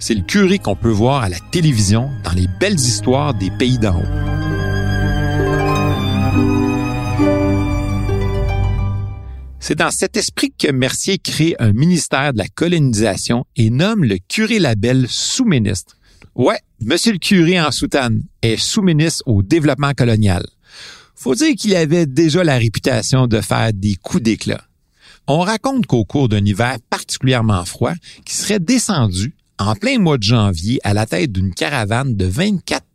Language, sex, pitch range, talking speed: French, male, 105-150 Hz, 150 wpm